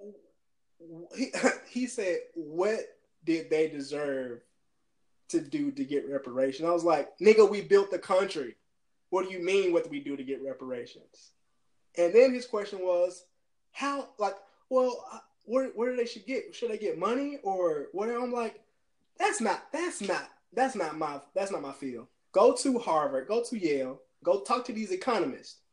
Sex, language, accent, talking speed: male, English, American, 175 wpm